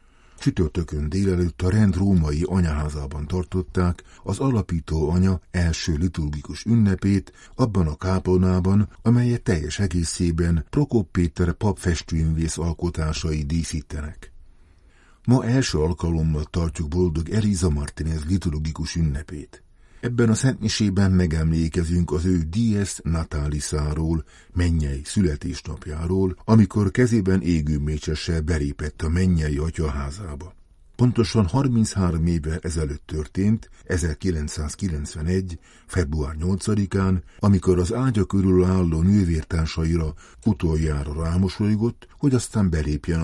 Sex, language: male, Hungarian